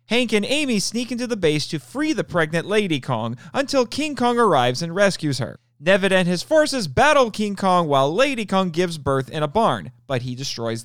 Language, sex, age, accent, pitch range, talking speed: English, male, 40-59, American, 140-225 Hz, 210 wpm